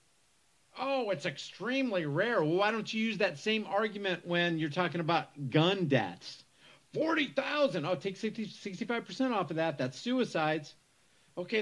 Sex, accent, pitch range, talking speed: male, American, 145-200 Hz, 145 wpm